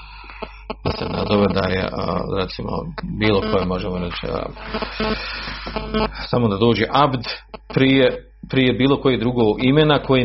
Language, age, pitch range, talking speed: Croatian, 40-59, 105-150 Hz, 115 wpm